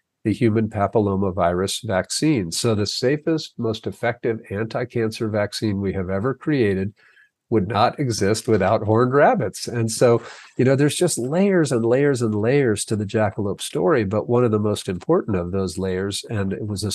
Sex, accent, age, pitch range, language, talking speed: male, American, 50-69, 100-115 Hz, English, 175 wpm